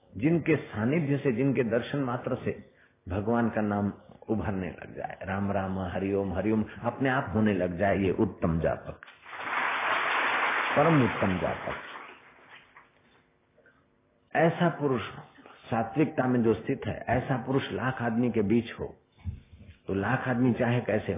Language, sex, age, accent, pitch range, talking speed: Hindi, male, 50-69, native, 100-125 Hz, 140 wpm